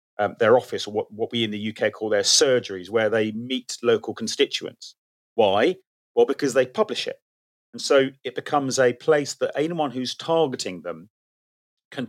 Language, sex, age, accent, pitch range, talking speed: English, male, 30-49, British, 110-150 Hz, 180 wpm